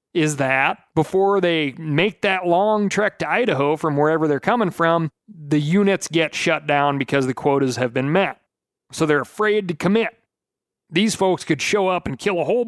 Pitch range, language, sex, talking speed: 140-185 Hz, English, male, 190 wpm